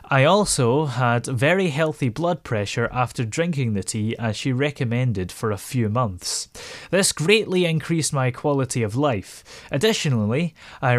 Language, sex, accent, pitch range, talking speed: English, male, British, 120-160 Hz, 145 wpm